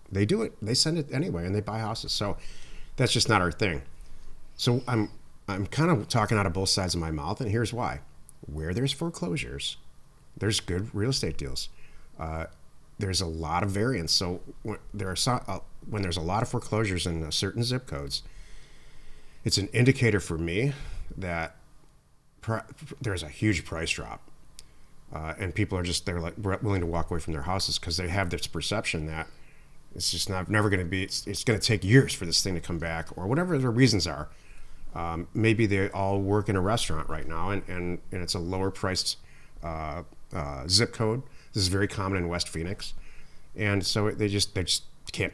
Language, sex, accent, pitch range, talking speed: English, male, American, 85-115 Hz, 205 wpm